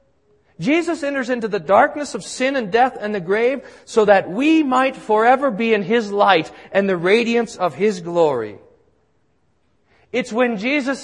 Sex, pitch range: male, 160-230 Hz